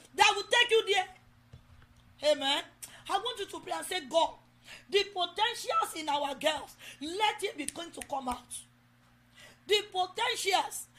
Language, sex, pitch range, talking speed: English, female, 320-395 Hz, 145 wpm